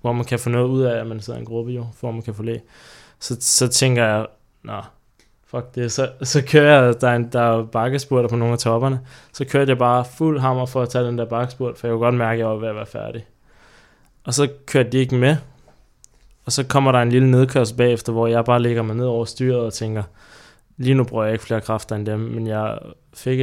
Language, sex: Danish, male